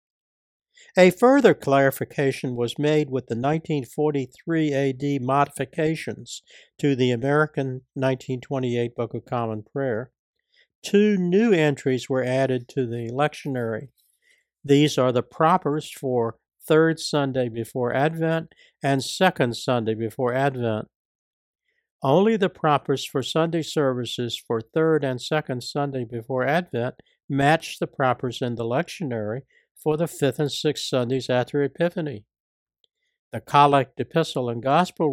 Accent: American